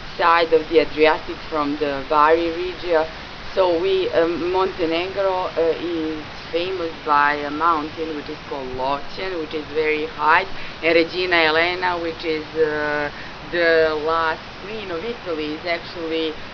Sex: female